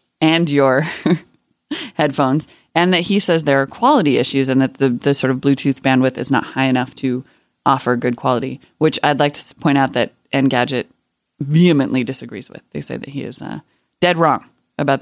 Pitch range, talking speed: 130-175 Hz, 190 wpm